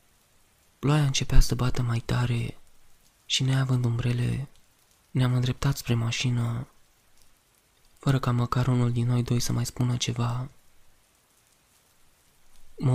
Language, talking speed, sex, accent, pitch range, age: Romanian, 115 wpm, male, native, 120-130 Hz, 20-39